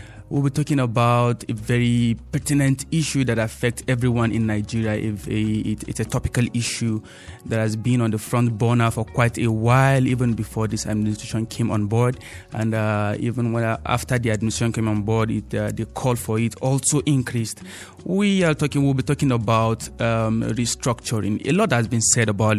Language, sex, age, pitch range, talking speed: English, male, 30-49, 110-130 Hz, 180 wpm